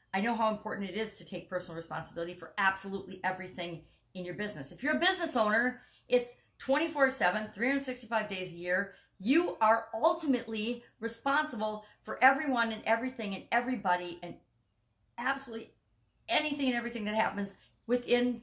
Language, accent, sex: English, American, female